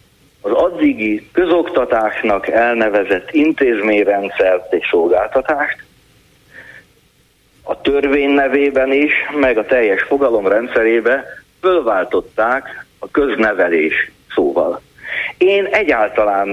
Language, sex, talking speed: Hungarian, male, 75 wpm